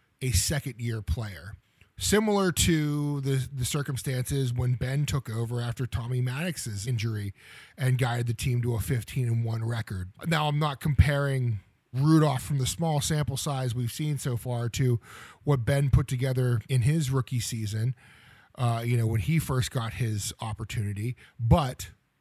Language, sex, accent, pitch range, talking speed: English, male, American, 115-150 Hz, 160 wpm